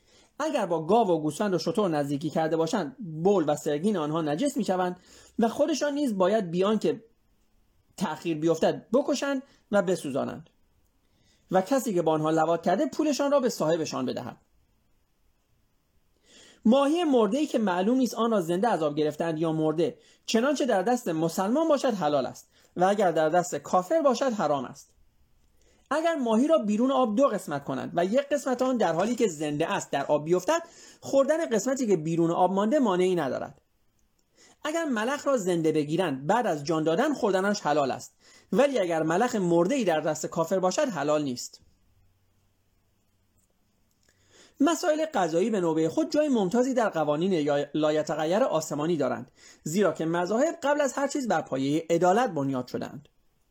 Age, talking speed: 30-49, 160 wpm